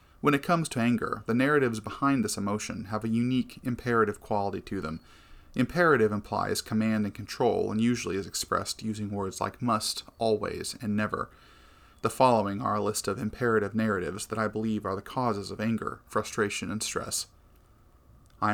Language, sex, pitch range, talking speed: English, male, 100-115 Hz, 170 wpm